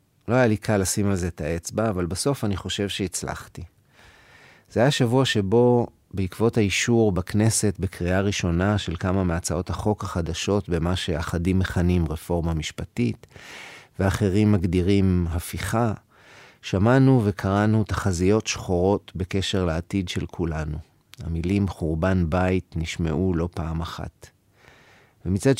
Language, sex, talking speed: Hebrew, male, 120 wpm